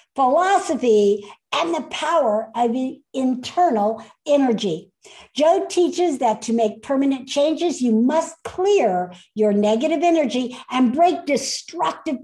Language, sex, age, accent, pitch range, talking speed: English, female, 60-79, American, 230-325 Hz, 120 wpm